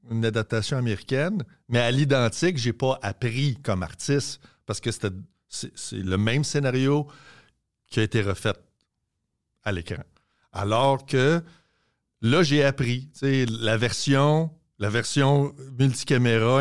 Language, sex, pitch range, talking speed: French, male, 110-135 Hz, 125 wpm